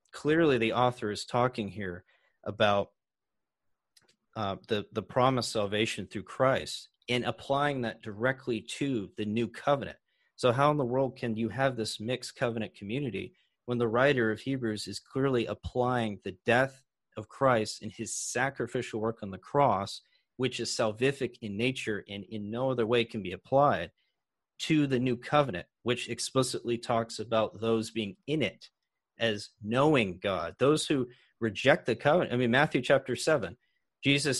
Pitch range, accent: 115-145 Hz, American